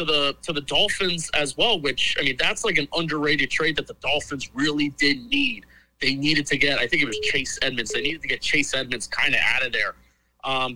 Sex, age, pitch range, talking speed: male, 30-49, 140-175 Hz, 235 wpm